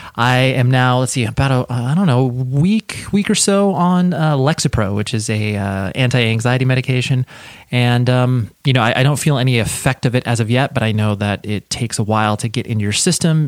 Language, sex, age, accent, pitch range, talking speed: English, male, 30-49, American, 110-145 Hz, 230 wpm